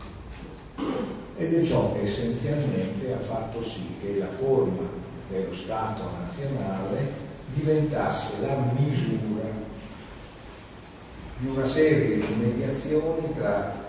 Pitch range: 100-140 Hz